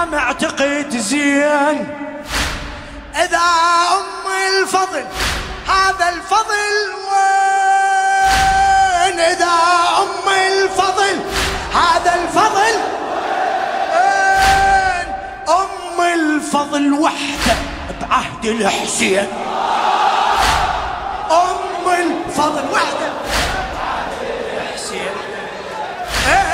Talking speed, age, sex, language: 55 wpm, 30-49, male, Arabic